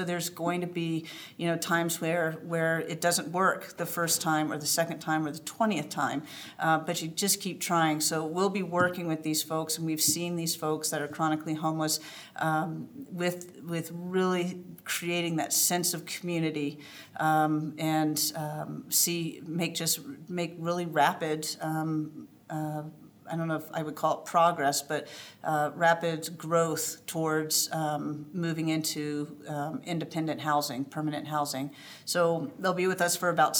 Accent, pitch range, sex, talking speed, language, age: American, 155-170 Hz, female, 170 wpm, English, 50-69